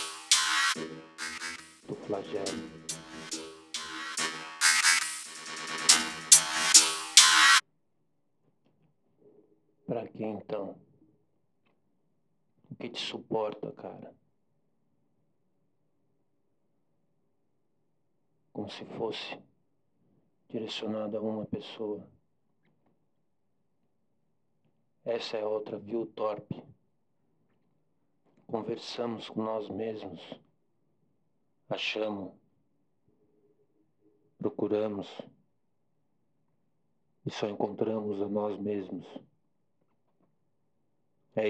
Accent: Brazilian